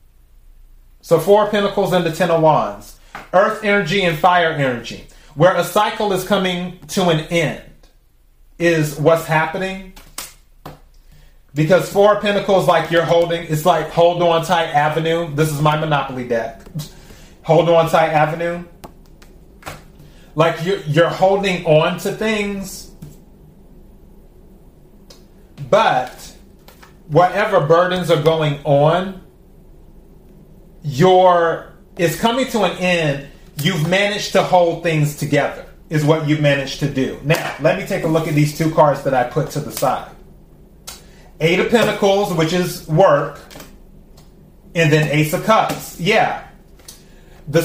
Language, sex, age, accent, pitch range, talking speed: English, male, 30-49, American, 155-185 Hz, 135 wpm